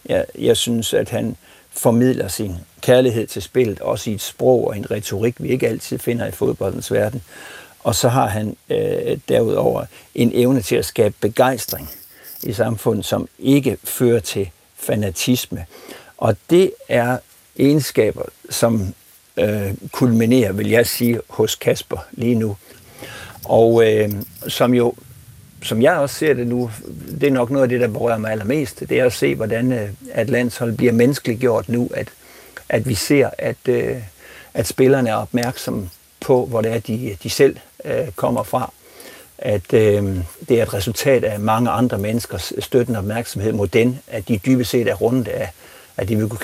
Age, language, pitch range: 60-79, Danish, 105-125 Hz